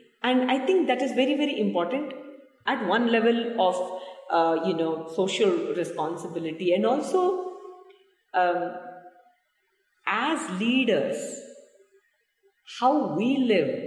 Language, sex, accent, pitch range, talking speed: English, female, Indian, 190-275 Hz, 110 wpm